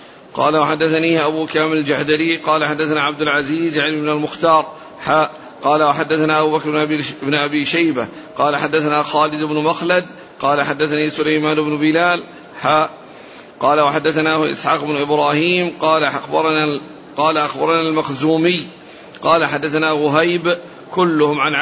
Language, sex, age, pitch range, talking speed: Arabic, male, 50-69, 150-165 Hz, 120 wpm